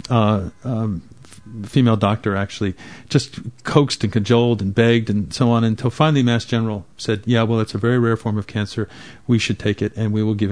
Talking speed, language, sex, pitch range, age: 205 wpm, English, male, 100-125 Hz, 50-69